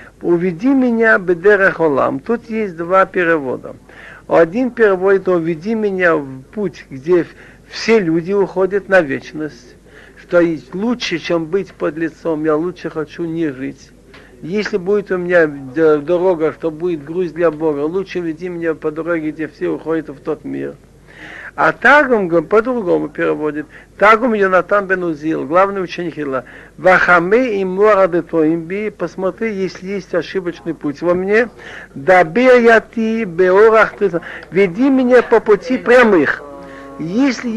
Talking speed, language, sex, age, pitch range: 135 wpm, Russian, male, 60-79, 165-215 Hz